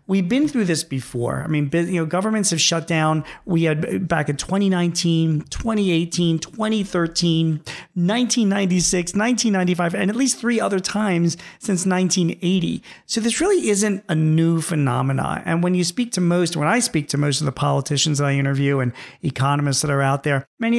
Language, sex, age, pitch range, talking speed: English, male, 40-59, 145-190 Hz, 175 wpm